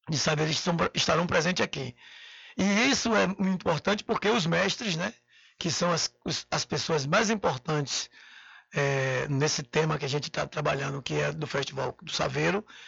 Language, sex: Portuguese, male